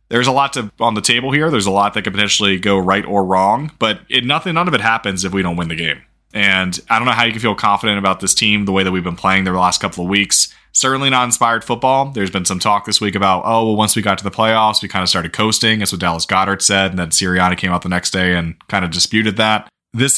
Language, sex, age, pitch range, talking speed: English, male, 20-39, 95-110 Hz, 290 wpm